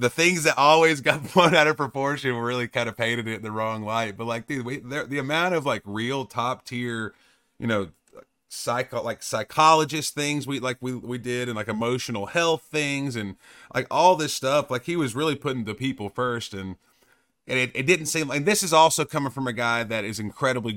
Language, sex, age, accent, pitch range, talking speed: English, male, 30-49, American, 105-140 Hz, 225 wpm